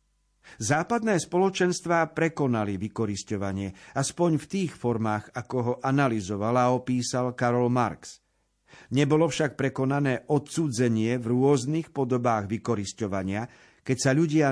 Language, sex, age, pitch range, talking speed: Slovak, male, 50-69, 110-145 Hz, 105 wpm